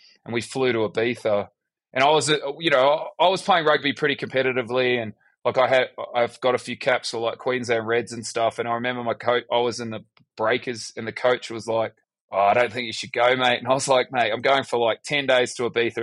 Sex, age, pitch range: male, 20-39, 115-130 Hz